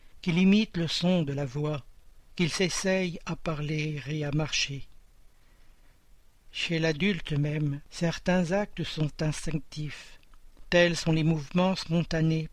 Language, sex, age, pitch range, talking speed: French, male, 60-79, 140-170 Hz, 125 wpm